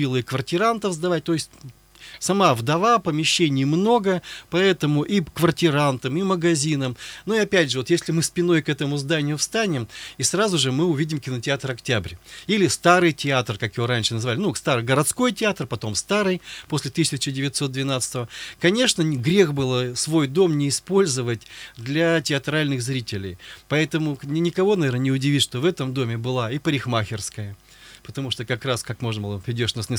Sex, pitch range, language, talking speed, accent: male, 130-175 Hz, Russian, 160 wpm, native